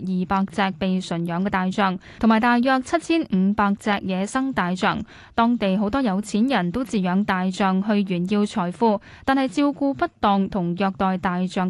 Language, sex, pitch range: Chinese, female, 190-240 Hz